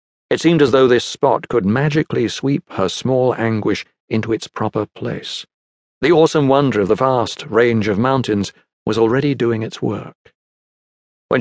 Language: English